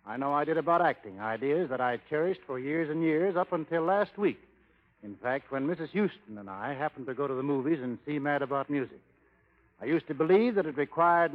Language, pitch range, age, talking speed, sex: English, 135-190 Hz, 60-79, 230 wpm, male